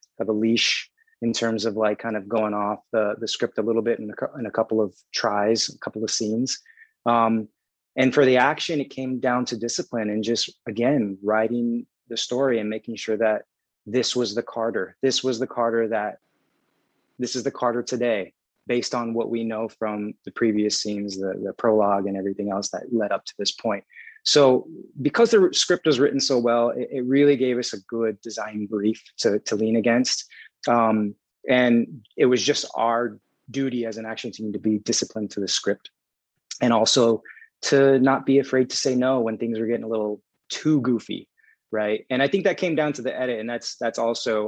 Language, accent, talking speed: English, American, 205 wpm